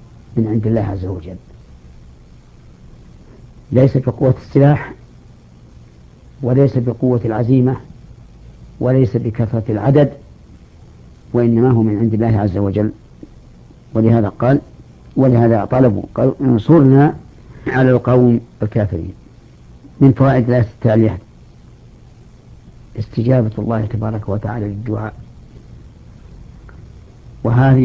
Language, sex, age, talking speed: Arabic, female, 50-69, 80 wpm